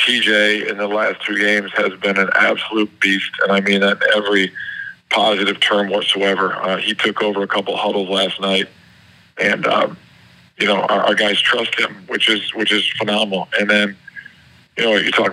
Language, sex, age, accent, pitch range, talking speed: English, male, 40-59, American, 100-105 Hz, 195 wpm